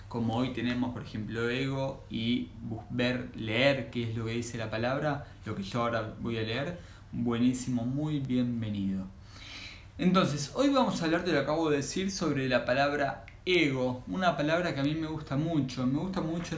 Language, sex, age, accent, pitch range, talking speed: Spanish, male, 20-39, Argentinian, 110-155 Hz, 190 wpm